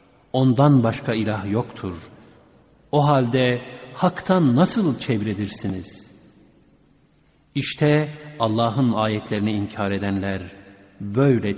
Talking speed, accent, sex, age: 80 wpm, native, male, 50-69